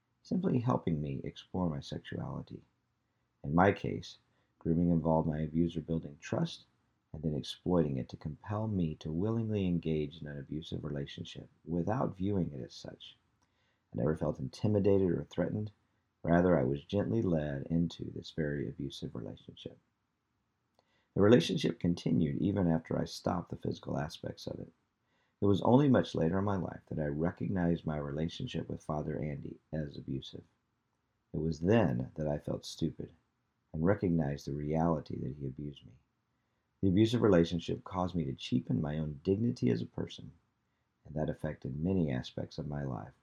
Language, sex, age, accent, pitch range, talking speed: English, male, 50-69, American, 75-95 Hz, 160 wpm